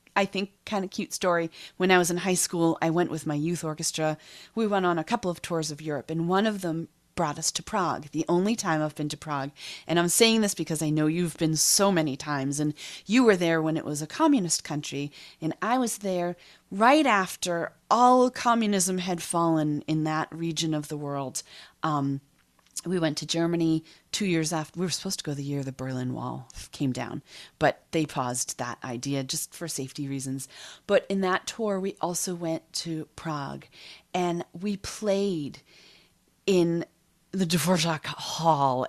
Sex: female